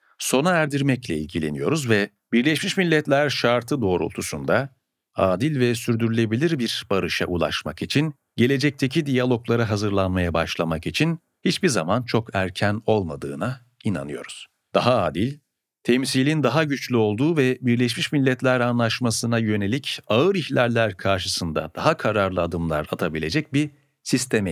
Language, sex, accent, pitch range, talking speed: Turkish, male, native, 105-140 Hz, 115 wpm